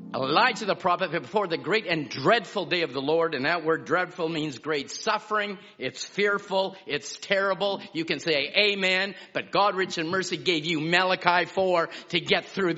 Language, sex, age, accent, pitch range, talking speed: English, male, 50-69, American, 145-190 Hz, 185 wpm